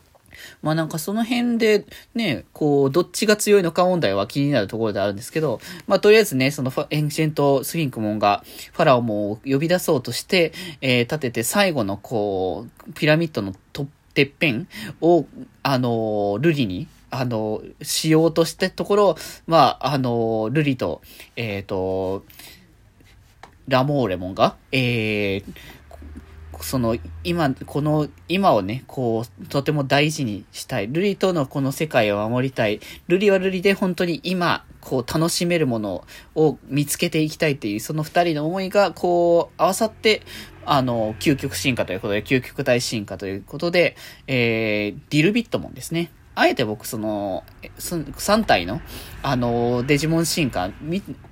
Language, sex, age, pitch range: Japanese, male, 20-39, 110-170 Hz